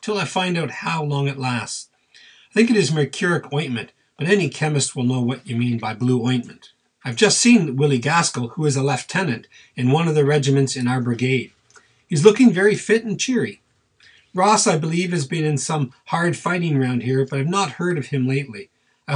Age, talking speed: 40-59, 205 wpm